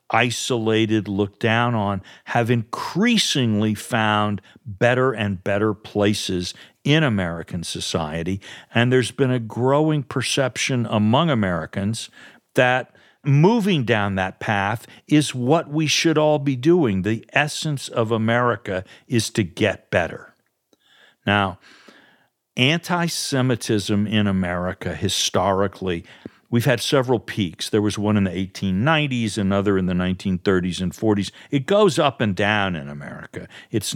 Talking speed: 125 wpm